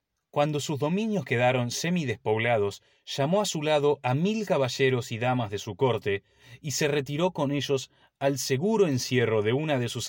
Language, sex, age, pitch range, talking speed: Spanish, male, 30-49, 115-150 Hz, 175 wpm